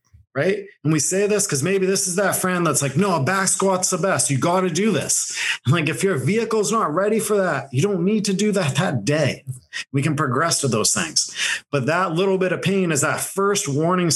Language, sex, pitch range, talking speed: English, male, 140-195 Hz, 240 wpm